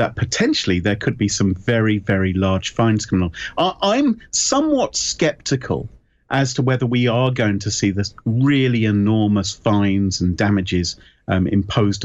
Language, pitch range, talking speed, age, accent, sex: English, 95-125 Hz, 155 wpm, 40-59, British, male